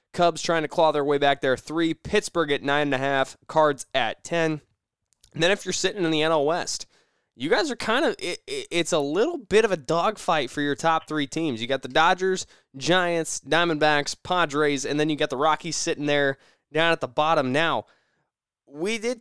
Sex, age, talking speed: male, 20-39, 205 wpm